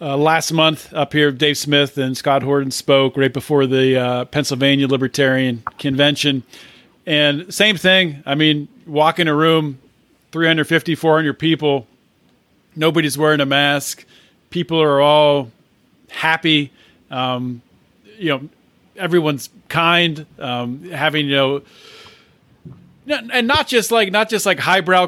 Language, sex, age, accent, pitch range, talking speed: English, male, 40-59, American, 145-205 Hz, 130 wpm